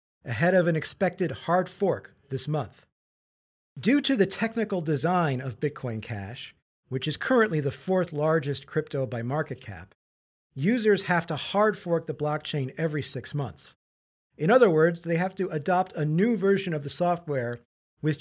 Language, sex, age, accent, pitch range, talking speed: English, male, 40-59, American, 130-180 Hz, 165 wpm